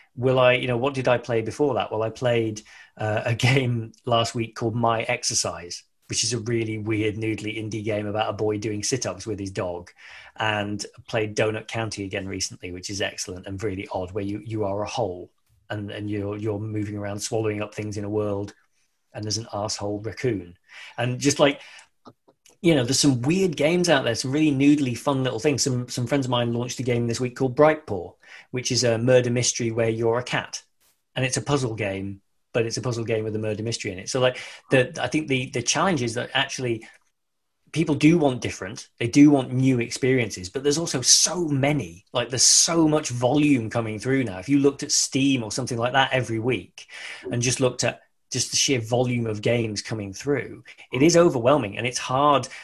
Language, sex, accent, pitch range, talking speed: English, male, British, 110-130 Hz, 215 wpm